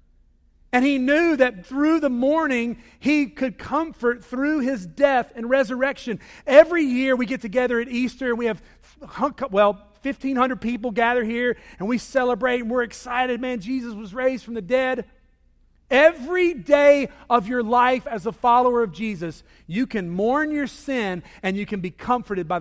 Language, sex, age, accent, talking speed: English, male, 40-59, American, 170 wpm